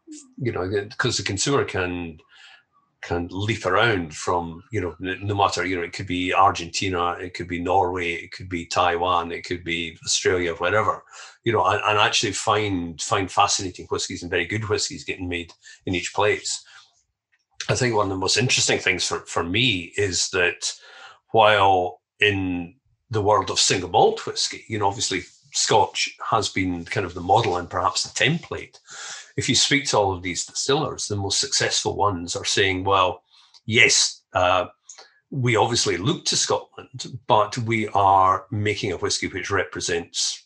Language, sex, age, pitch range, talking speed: Greek, male, 40-59, 85-115 Hz, 170 wpm